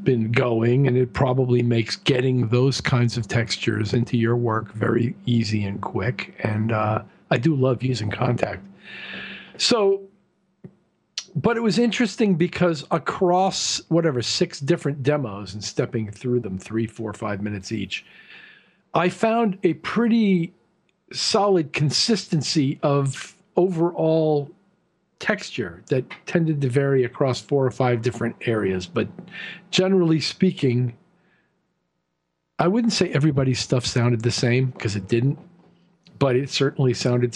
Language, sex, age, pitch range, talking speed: English, male, 50-69, 115-175 Hz, 130 wpm